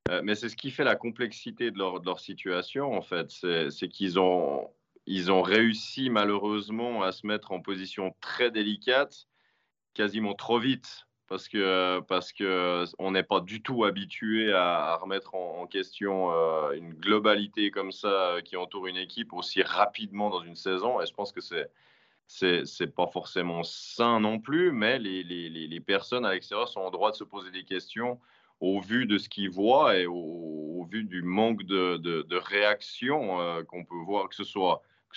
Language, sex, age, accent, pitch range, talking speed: French, male, 20-39, French, 90-105 Hz, 190 wpm